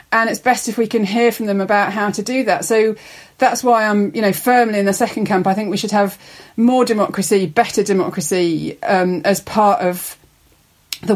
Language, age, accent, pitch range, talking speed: English, 40-59, British, 190-220 Hz, 210 wpm